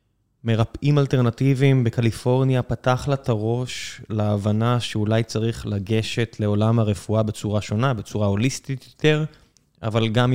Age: 20-39